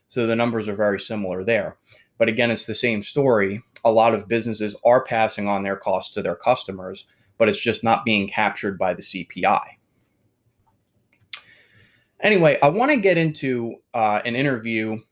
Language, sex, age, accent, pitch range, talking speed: English, male, 20-39, American, 105-125 Hz, 170 wpm